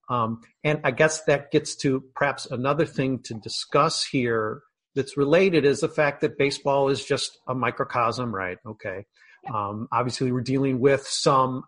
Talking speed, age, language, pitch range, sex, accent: 165 wpm, 40-59, English, 120-150 Hz, male, American